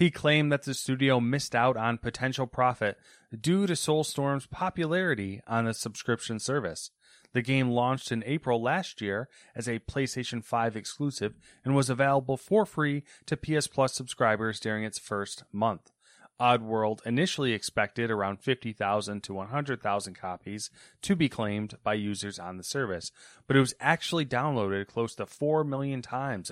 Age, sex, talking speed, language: 30-49, male, 155 wpm, English